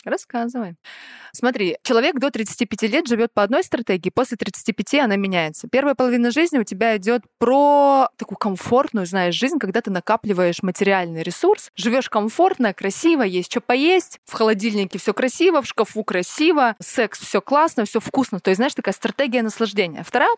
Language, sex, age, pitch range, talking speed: Russian, female, 20-39, 200-250 Hz, 160 wpm